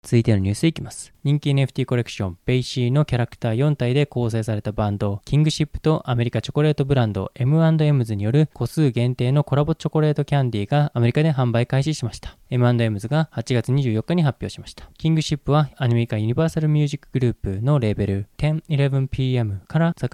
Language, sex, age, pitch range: Japanese, male, 20-39, 115-145 Hz